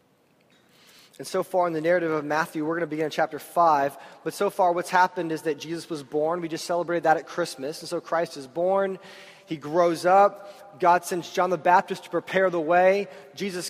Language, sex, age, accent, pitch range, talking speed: English, male, 20-39, American, 180-230 Hz, 215 wpm